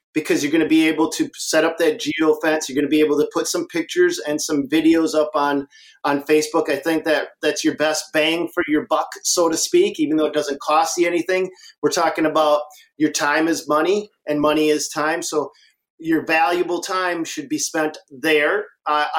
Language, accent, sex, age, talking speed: English, American, male, 40-59, 210 wpm